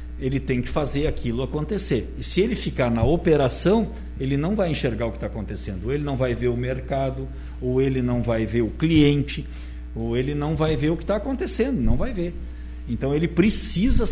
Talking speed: 210 wpm